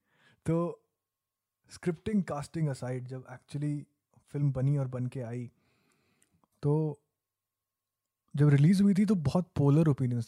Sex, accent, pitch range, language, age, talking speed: male, native, 125-165 Hz, Hindi, 30-49, 125 wpm